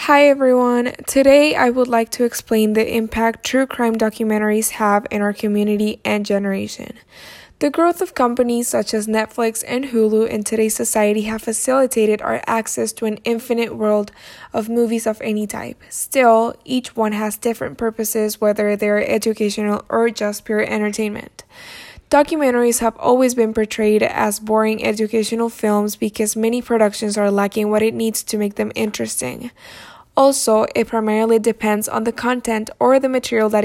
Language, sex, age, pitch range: English, female, 10-29, 215-245 Hz